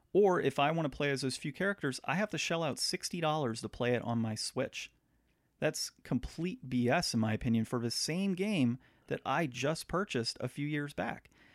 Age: 30-49